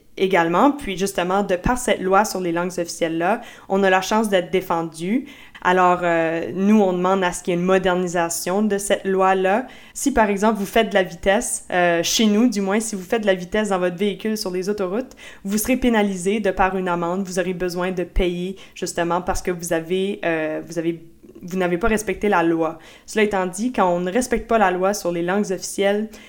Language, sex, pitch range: French, female, 175-200 Hz